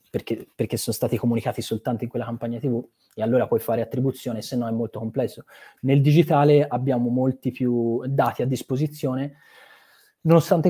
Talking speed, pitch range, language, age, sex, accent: 165 wpm, 115-140 Hz, Italian, 20-39, male, native